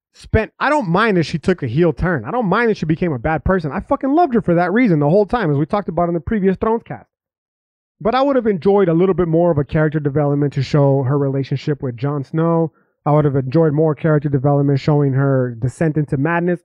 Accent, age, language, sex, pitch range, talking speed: American, 30-49, English, male, 145-200 Hz, 250 wpm